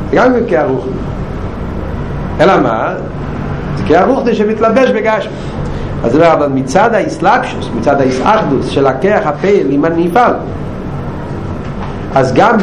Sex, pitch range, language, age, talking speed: male, 145-195 Hz, Hebrew, 60-79, 115 wpm